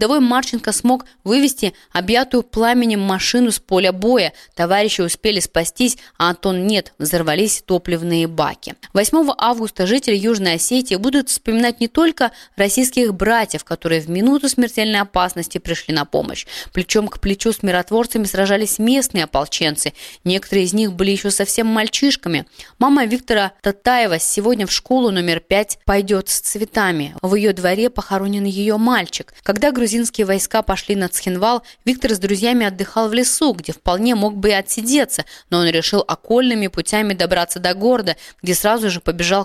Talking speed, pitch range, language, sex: 150 wpm, 180-230 Hz, Russian, female